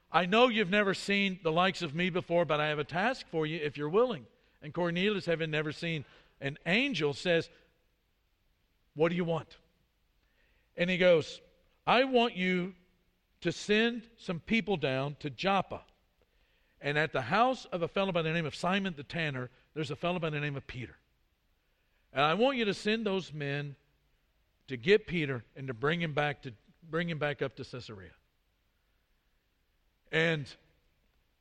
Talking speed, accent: 170 wpm, American